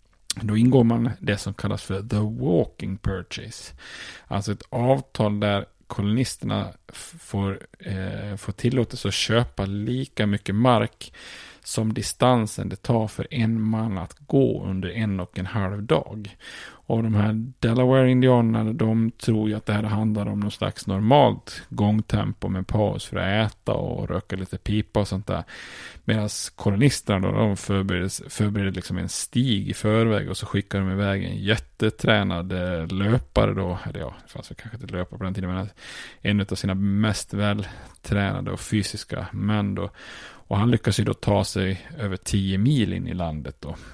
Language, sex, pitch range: Swedish, male, 95-115 Hz